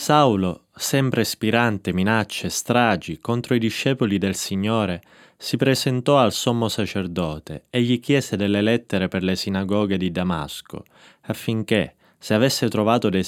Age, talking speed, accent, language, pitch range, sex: 20-39, 140 wpm, native, Italian, 95-120 Hz, male